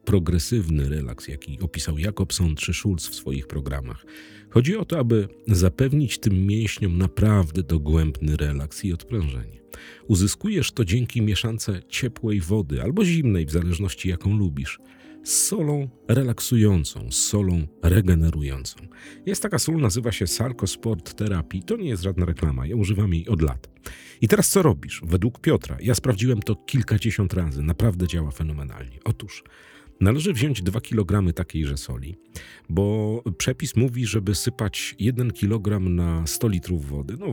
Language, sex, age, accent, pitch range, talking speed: Polish, male, 40-59, native, 80-115 Hz, 145 wpm